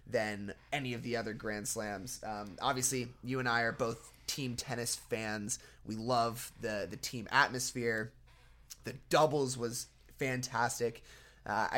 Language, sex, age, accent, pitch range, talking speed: English, male, 20-39, American, 115-135 Hz, 145 wpm